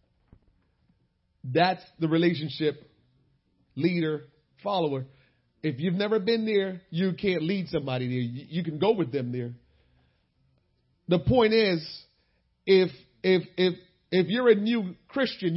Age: 40-59